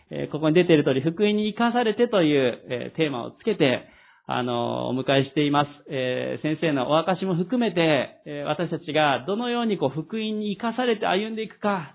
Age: 40-59